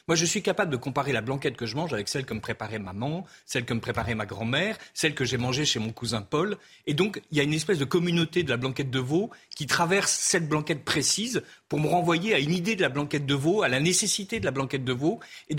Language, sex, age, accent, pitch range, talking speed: French, male, 40-59, French, 130-175 Hz, 270 wpm